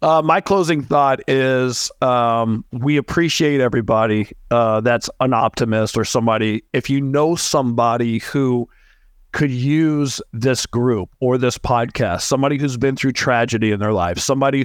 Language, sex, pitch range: English, male, 115-135 Hz